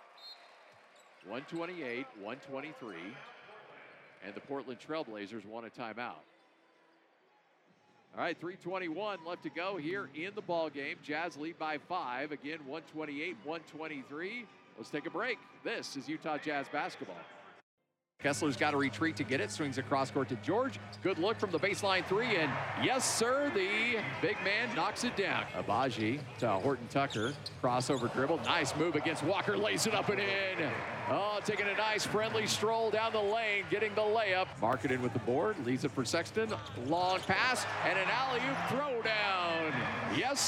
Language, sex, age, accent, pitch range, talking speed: English, male, 50-69, American, 135-190 Hz, 155 wpm